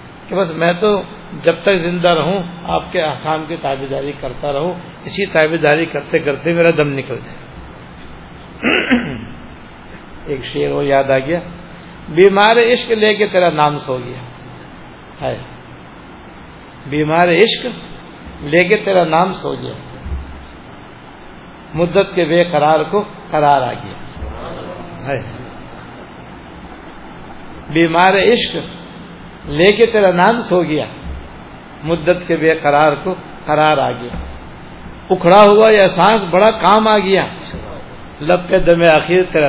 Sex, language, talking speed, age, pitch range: male, Urdu, 125 wpm, 60-79, 135-180 Hz